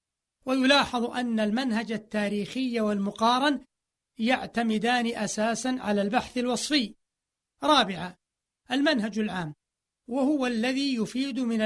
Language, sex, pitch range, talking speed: Arabic, male, 205-245 Hz, 85 wpm